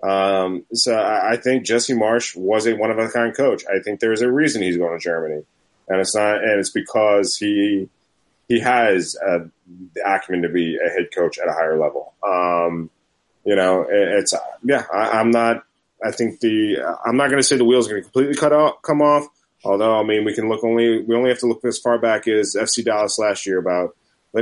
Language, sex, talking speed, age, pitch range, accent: English, male, 220 wpm, 30-49, 90-120 Hz, American